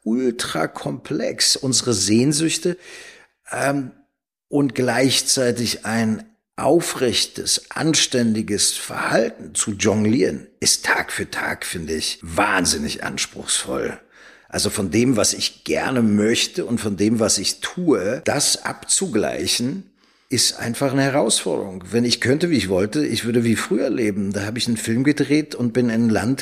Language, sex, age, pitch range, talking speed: German, male, 50-69, 105-125 Hz, 140 wpm